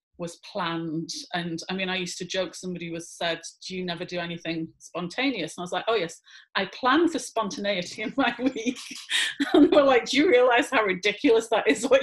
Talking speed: 215 wpm